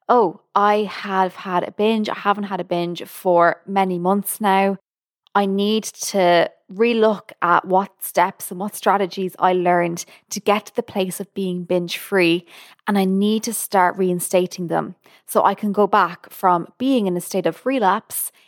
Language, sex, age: English, female, 20-39